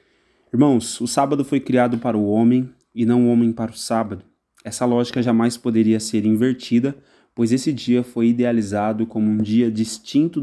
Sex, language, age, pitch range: male, Portuguese, 20-39, 110-130 Hz